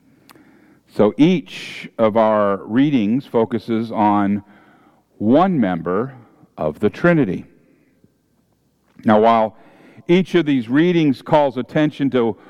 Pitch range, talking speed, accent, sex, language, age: 115-170 Hz, 100 wpm, American, male, English, 50-69